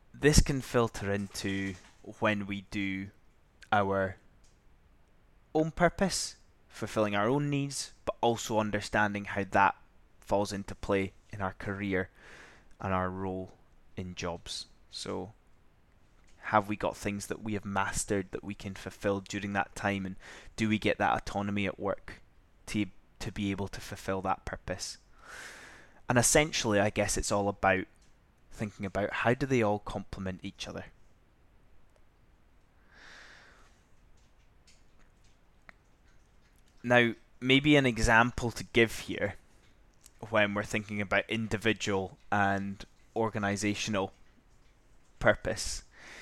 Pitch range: 95-110 Hz